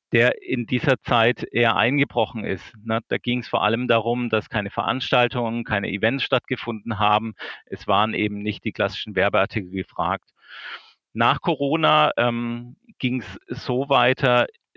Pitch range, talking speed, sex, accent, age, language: 105-125 Hz, 140 wpm, male, German, 40-59, German